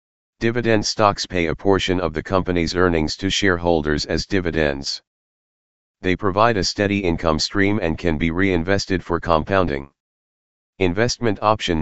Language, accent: English, American